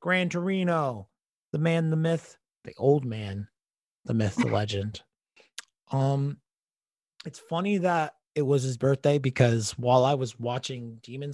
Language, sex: English, male